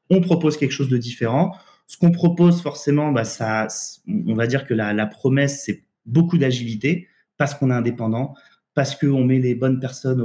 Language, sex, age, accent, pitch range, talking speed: French, male, 30-49, French, 115-150 Hz, 185 wpm